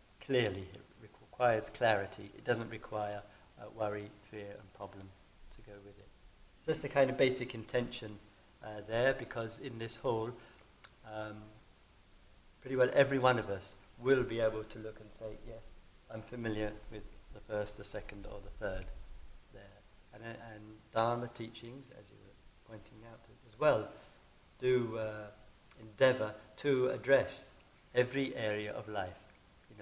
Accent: British